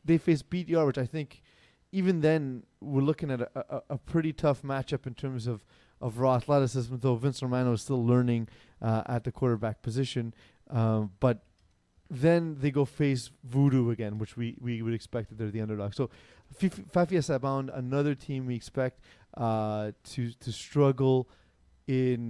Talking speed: 170 wpm